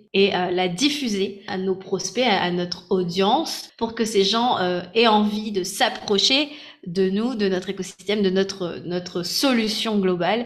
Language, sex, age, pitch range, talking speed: French, female, 20-39, 195-235 Hz, 170 wpm